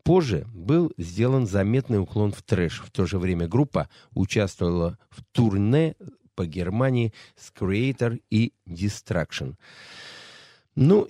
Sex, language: male, Russian